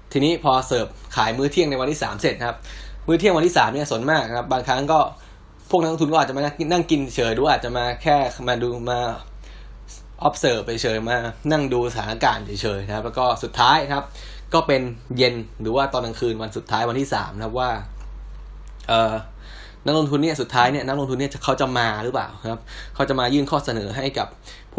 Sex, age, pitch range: male, 10-29, 115-145 Hz